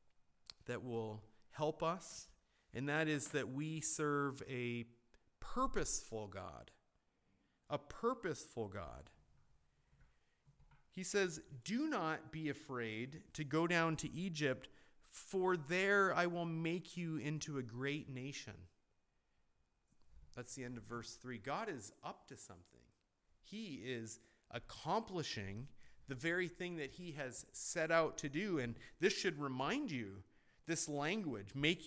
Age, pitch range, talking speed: 40-59, 120-165 Hz, 130 wpm